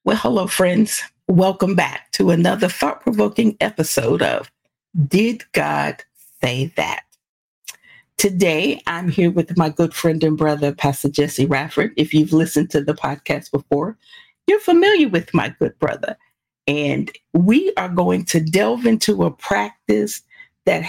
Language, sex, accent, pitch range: English, female, American, 150-215 Hz